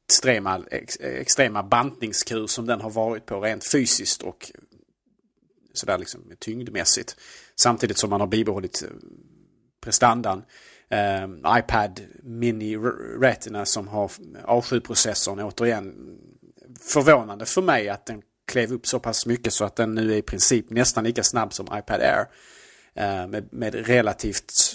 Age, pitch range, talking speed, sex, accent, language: 30-49, 110-130 Hz, 135 wpm, male, Norwegian, Swedish